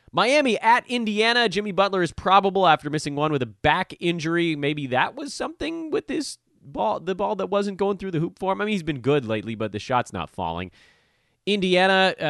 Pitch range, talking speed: 100-150 Hz, 210 wpm